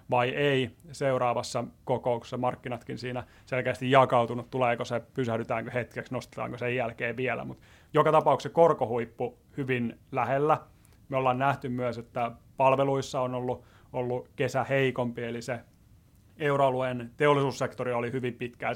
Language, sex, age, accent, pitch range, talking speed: Finnish, male, 30-49, native, 120-135 Hz, 130 wpm